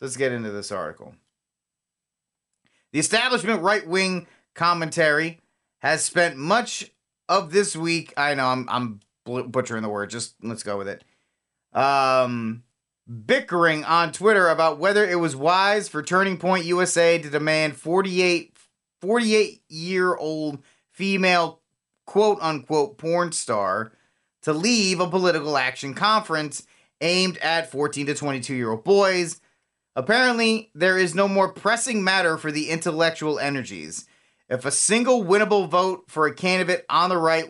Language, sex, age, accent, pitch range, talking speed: English, male, 30-49, American, 135-180 Hz, 130 wpm